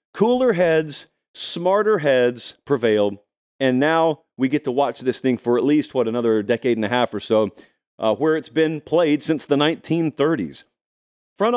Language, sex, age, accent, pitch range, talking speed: English, male, 40-59, American, 125-190 Hz, 170 wpm